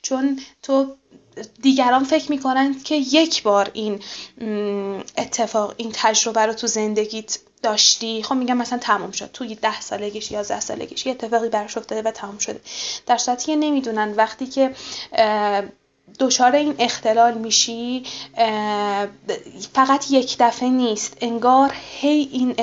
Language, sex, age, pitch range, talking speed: Persian, female, 10-29, 215-255 Hz, 135 wpm